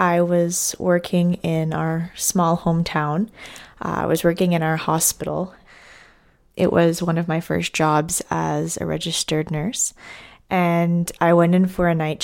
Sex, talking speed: female, 155 wpm